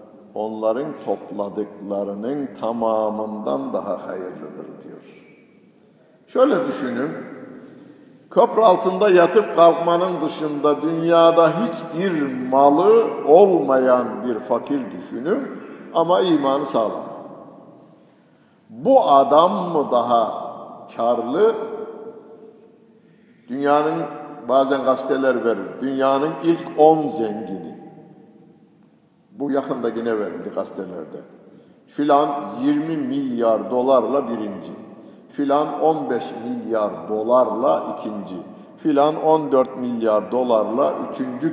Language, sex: Turkish, male